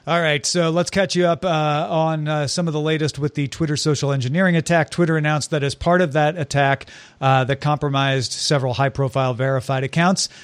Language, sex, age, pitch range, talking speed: English, male, 40-59, 135-165 Hz, 205 wpm